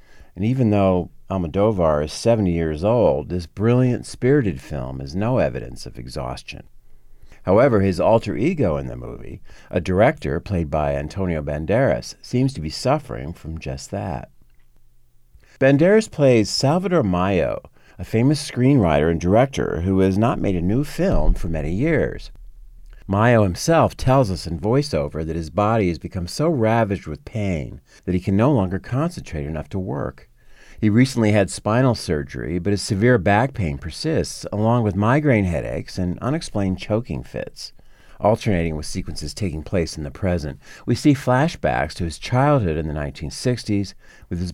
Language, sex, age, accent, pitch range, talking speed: English, male, 50-69, American, 80-115 Hz, 160 wpm